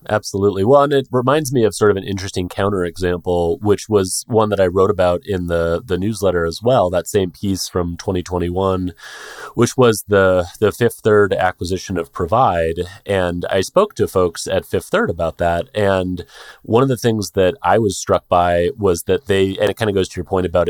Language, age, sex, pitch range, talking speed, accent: English, 30-49, male, 90-105 Hz, 205 wpm, American